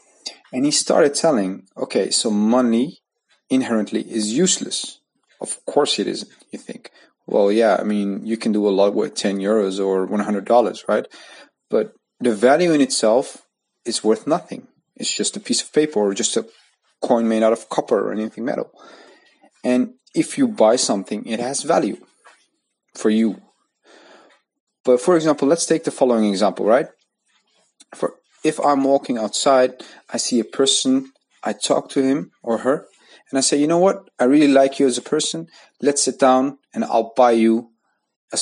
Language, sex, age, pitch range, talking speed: English, male, 30-49, 110-145 Hz, 175 wpm